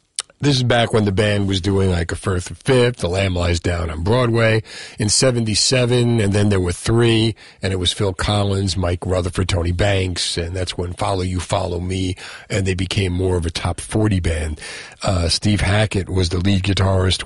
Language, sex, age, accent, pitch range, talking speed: English, male, 50-69, American, 90-120 Hz, 200 wpm